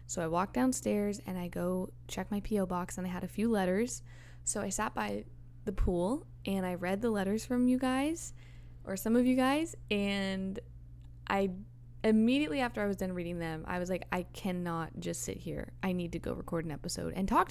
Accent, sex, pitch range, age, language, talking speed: American, female, 170-210 Hz, 10-29, English, 215 wpm